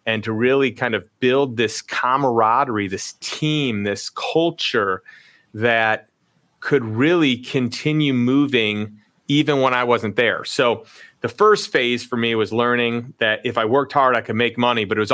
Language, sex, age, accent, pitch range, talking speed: English, male, 30-49, American, 115-140 Hz, 165 wpm